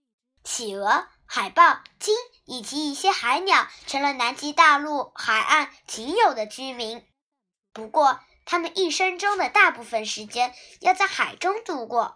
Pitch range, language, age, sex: 240-370 Hz, Chinese, 10-29, male